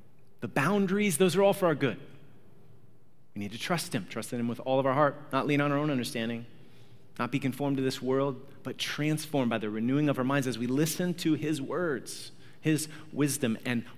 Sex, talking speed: male, 215 wpm